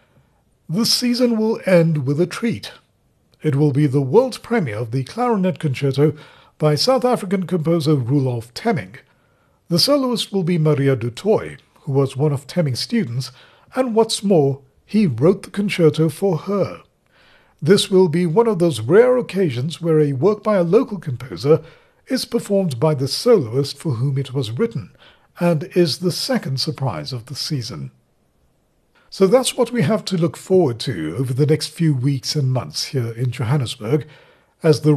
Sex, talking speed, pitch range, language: male, 170 wpm, 140-195 Hz, English